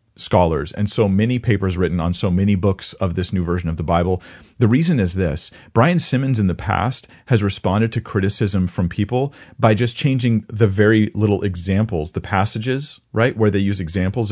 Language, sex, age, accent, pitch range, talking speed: English, male, 40-59, American, 90-115 Hz, 195 wpm